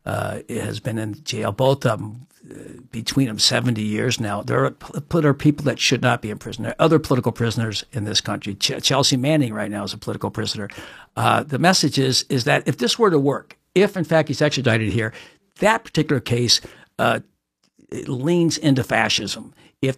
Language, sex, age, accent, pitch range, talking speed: English, male, 60-79, American, 120-155 Hz, 200 wpm